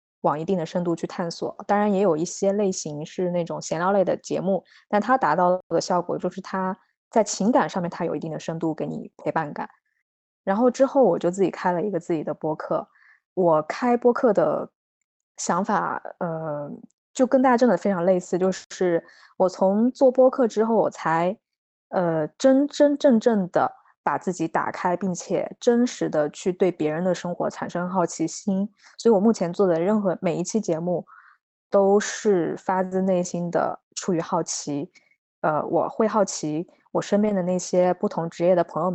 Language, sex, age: Chinese, female, 20-39